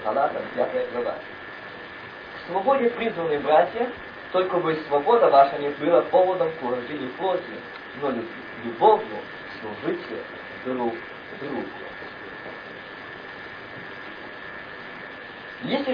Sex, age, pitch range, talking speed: male, 40-59, 165-225 Hz, 75 wpm